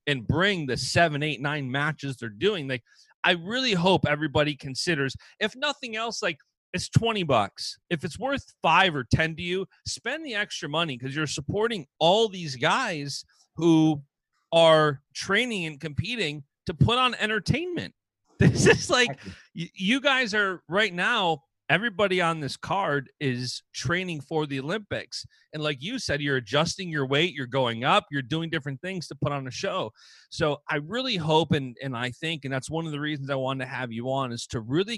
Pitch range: 135-175 Hz